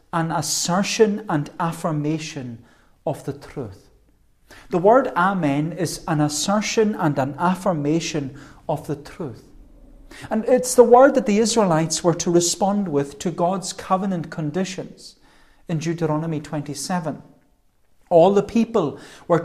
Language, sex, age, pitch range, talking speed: English, male, 40-59, 135-180 Hz, 125 wpm